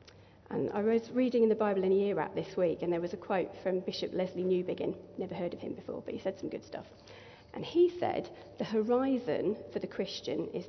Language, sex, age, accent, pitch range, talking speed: English, female, 40-59, British, 175-210 Hz, 235 wpm